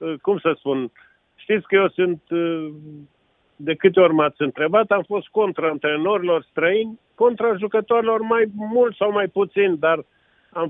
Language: Romanian